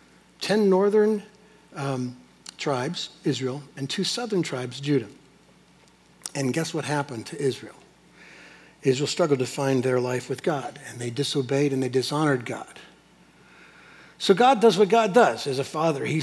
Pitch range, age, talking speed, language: 130-175 Hz, 60-79, 150 wpm, English